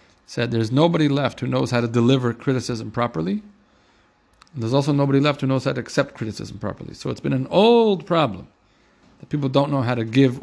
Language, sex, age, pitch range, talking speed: English, male, 40-59, 110-145 Hz, 205 wpm